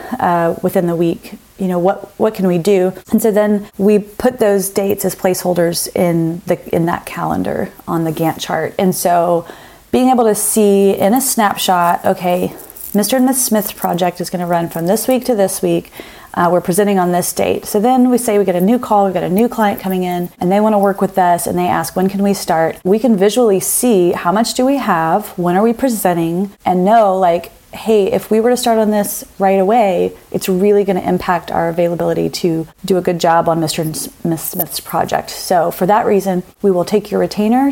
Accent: American